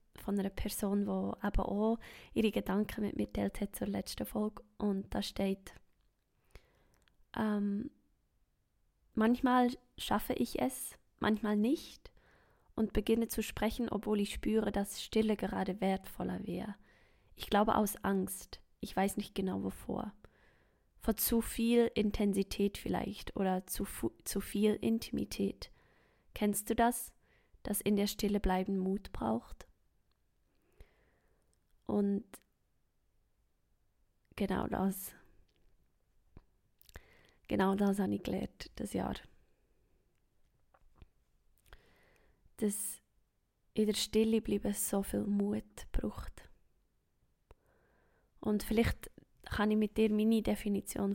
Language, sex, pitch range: German, female, 190-220 Hz